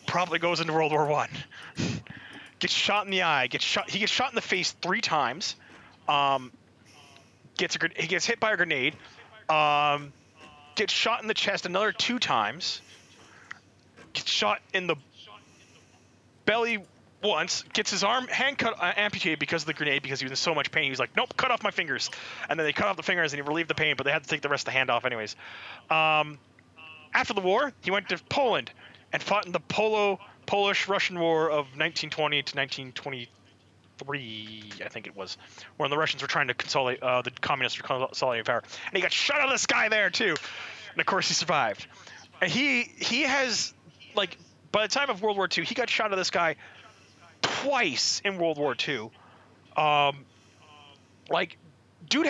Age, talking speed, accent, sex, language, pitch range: 30-49, 195 wpm, American, male, English, 135-200 Hz